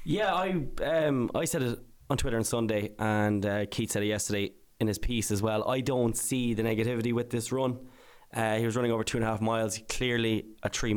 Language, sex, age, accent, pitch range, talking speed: English, male, 10-29, Irish, 105-120 Hz, 230 wpm